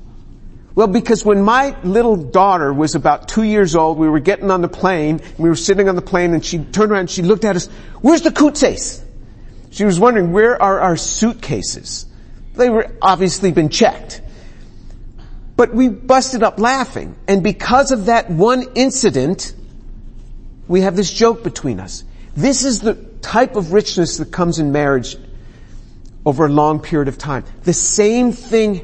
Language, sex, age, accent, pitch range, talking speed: English, male, 50-69, American, 160-230 Hz, 175 wpm